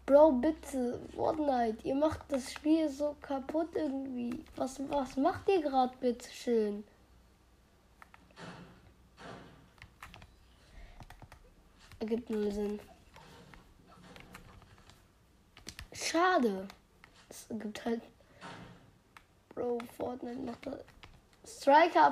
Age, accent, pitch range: 20-39, German, 230-280 Hz